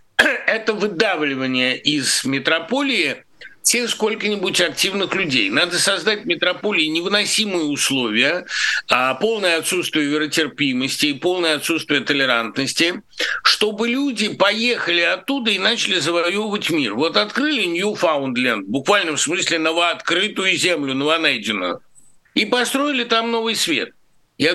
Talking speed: 110 wpm